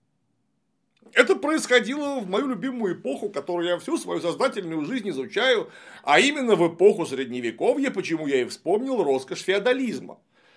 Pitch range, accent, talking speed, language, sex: 160-250 Hz, native, 135 wpm, Russian, male